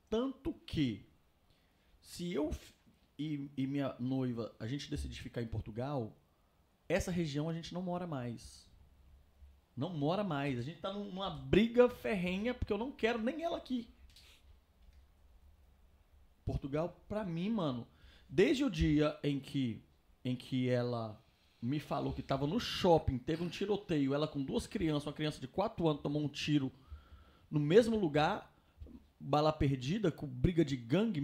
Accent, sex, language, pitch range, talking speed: Brazilian, male, Portuguese, 120-170 Hz, 150 wpm